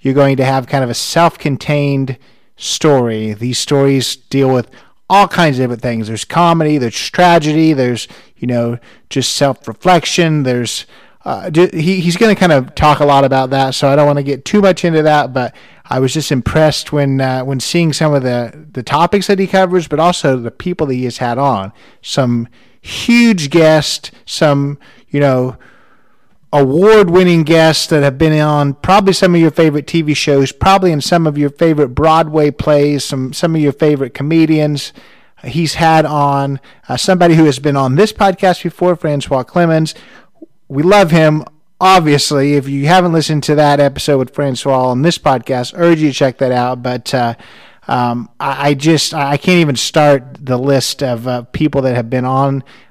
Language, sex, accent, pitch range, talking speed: English, male, American, 130-165 Hz, 185 wpm